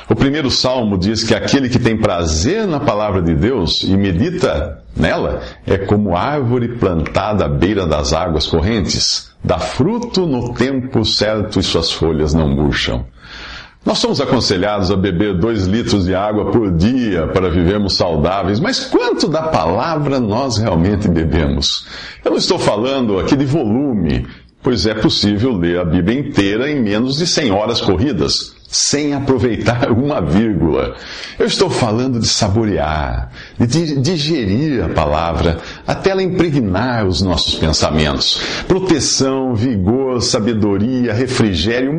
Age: 50-69